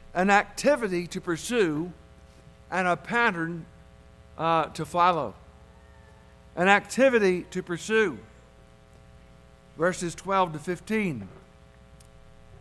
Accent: American